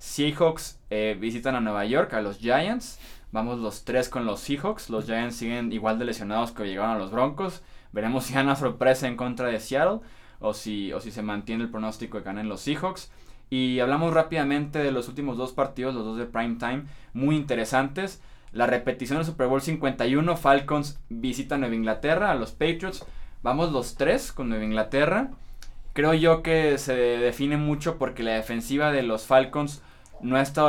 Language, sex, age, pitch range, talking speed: Spanish, male, 20-39, 110-135 Hz, 190 wpm